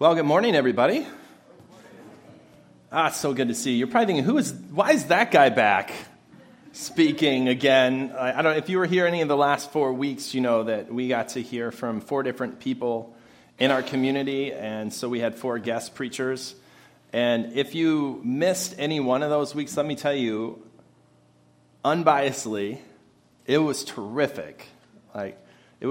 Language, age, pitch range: English, 30-49, 110-140 Hz